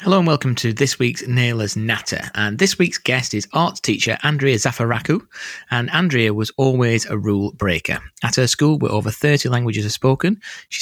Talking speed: 190 wpm